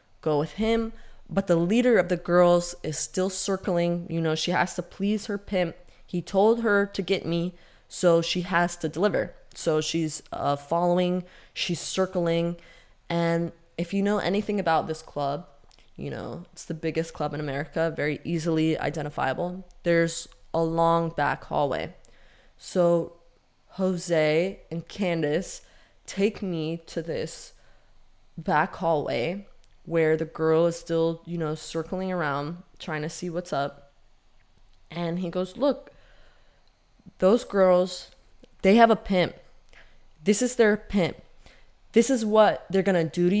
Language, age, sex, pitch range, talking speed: English, 20-39, female, 165-195 Hz, 145 wpm